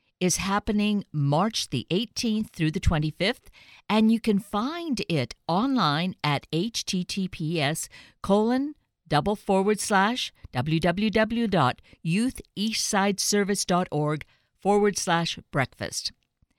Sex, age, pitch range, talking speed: female, 50-69, 145-205 Hz, 60 wpm